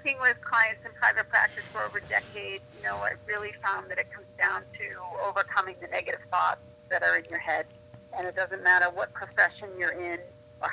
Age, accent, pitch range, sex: 40-59, American, 150-175 Hz, female